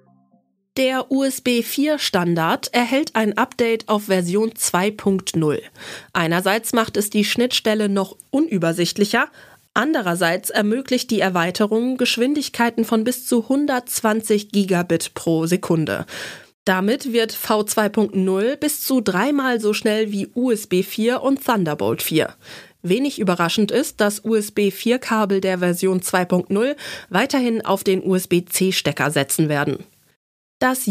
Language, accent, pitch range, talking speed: German, German, 185-235 Hz, 105 wpm